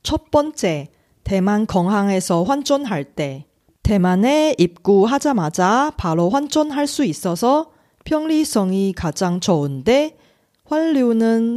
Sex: female